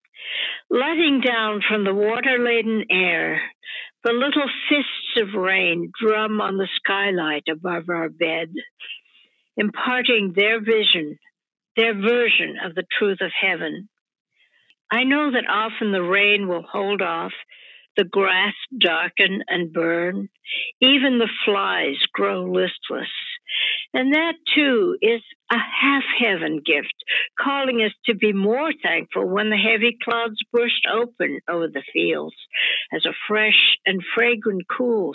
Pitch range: 190-250 Hz